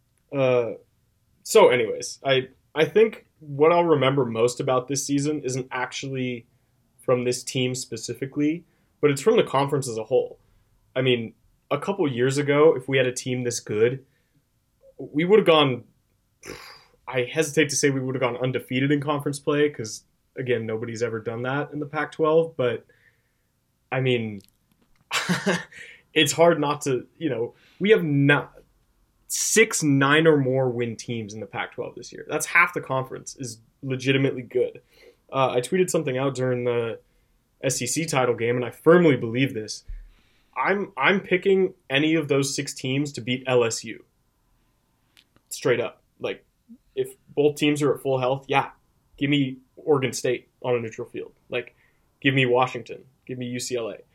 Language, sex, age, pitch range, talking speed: English, male, 20-39, 125-150 Hz, 165 wpm